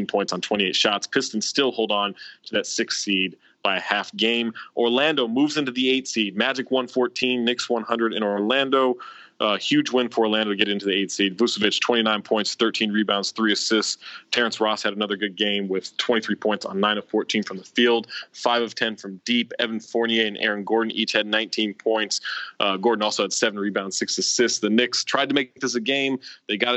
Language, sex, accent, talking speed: English, male, American, 210 wpm